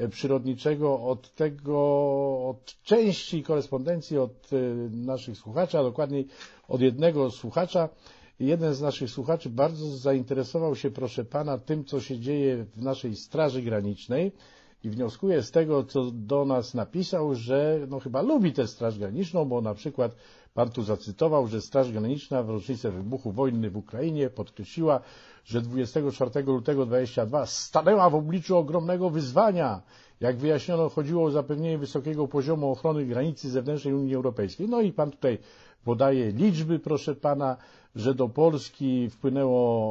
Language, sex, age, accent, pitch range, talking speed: Polish, male, 50-69, native, 130-155 Hz, 145 wpm